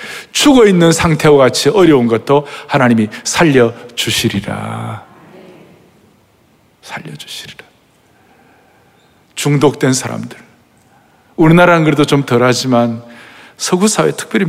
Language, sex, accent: Korean, male, native